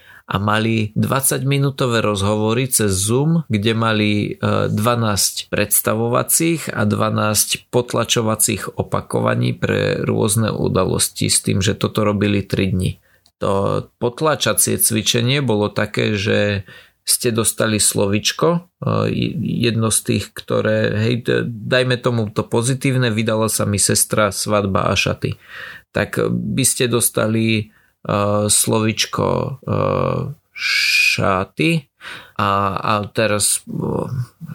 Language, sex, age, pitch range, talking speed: Slovak, male, 30-49, 105-125 Hz, 100 wpm